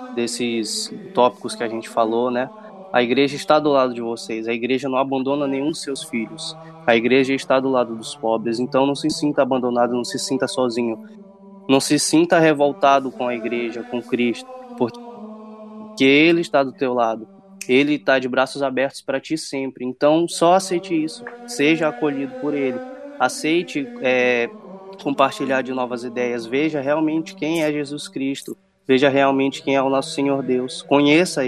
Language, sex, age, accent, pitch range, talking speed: Portuguese, male, 20-39, Brazilian, 120-160 Hz, 170 wpm